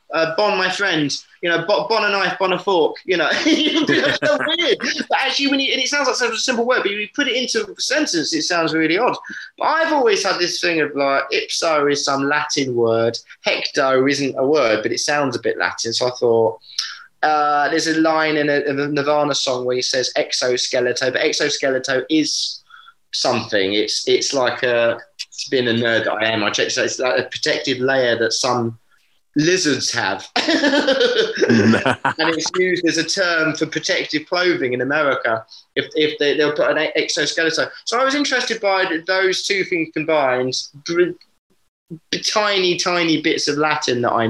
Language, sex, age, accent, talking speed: English, male, 20-39, British, 190 wpm